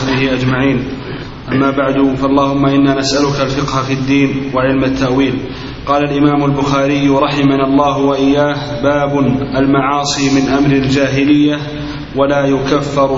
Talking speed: 115 wpm